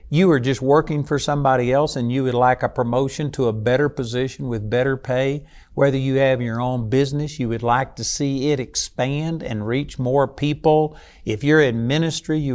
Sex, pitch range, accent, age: male, 125-165 Hz, American, 50-69